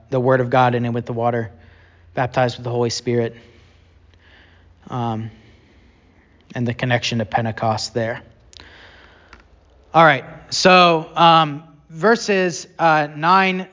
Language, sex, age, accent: English, male, 30-49, American